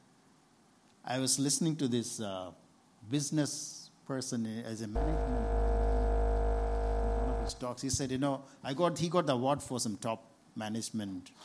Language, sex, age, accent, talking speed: English, male, 60-79, Indian, 155 wpm